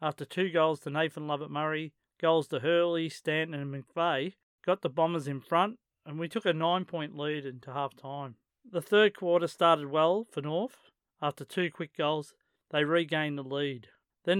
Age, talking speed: 40-59, 170 wpm